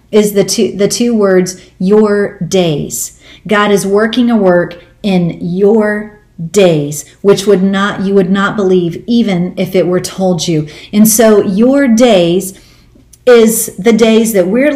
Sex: female